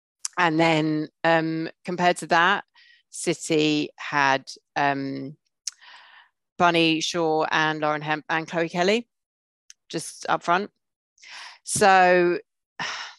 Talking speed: 95 wpm